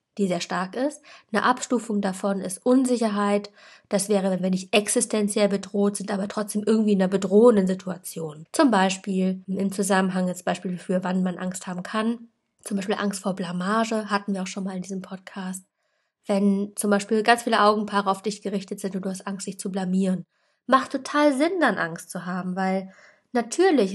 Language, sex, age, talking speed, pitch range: German, female, 20-39, 190 wpm, 190-220 Hz